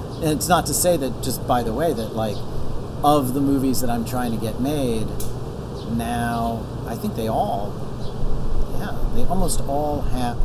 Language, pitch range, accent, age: English, 110-130 Hz, American, 40-59